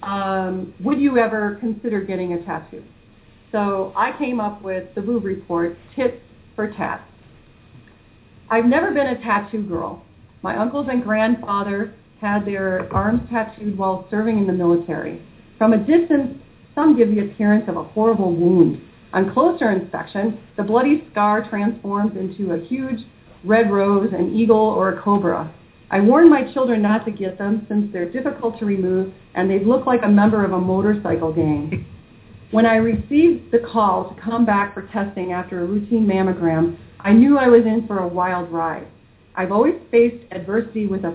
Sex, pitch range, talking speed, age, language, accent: female, 190-235 Hz, 175 wpm, 40-59, English, American